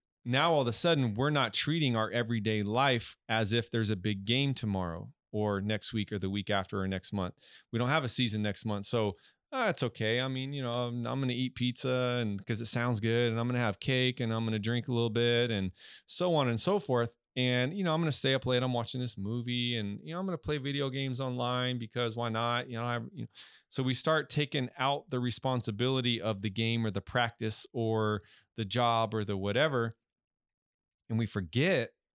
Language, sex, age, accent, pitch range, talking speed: English, male, 30-49, American, 105-125 Hz, 230 wpm